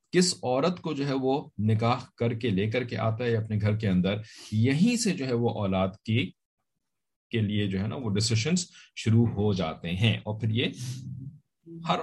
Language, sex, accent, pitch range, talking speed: English, male, Indian, 100-130 Hz, 190 wpm